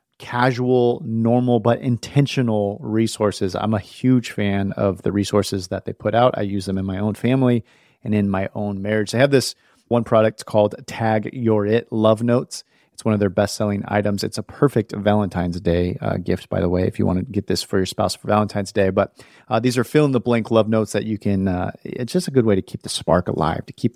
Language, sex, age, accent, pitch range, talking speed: English, male, 30-49, American, 100-120 Hz, 225 wpm